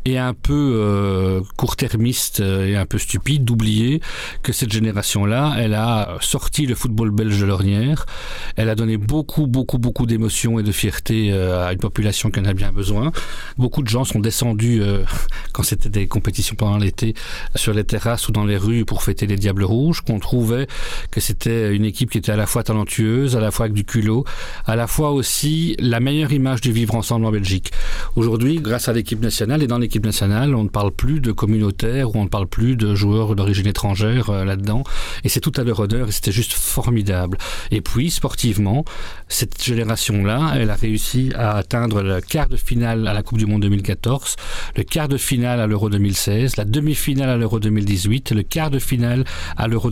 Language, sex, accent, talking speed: French, male, French, 200 wpm